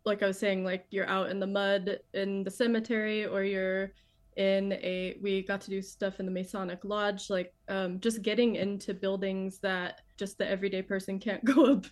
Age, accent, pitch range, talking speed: 20-39, American, 195-215 Hz, 200 wpm